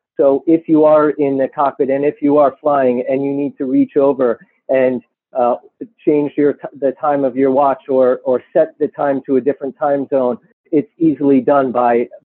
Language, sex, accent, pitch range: English, male, American, 130-145 Hz